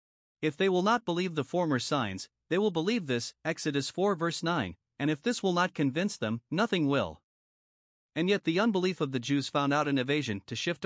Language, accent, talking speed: English, American, 210 wpm